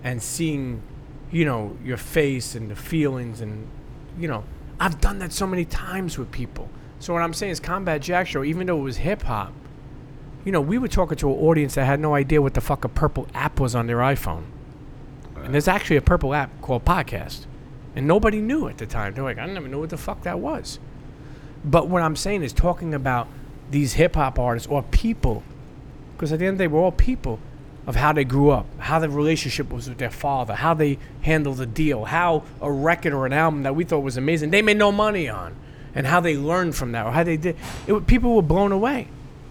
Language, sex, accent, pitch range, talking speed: English, male, American, 130-160 Hz, 230 wpm